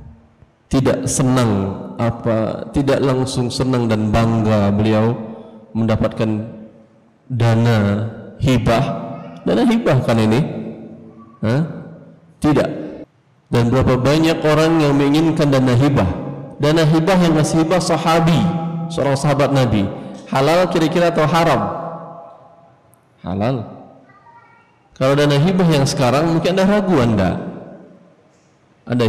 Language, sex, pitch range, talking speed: Indonesian, male, 110-140 Hz, 105 wpm